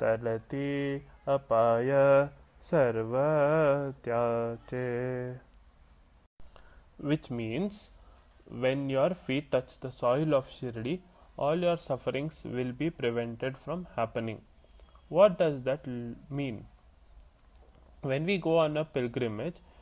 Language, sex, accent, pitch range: English, male, Indian, 120-150 Hz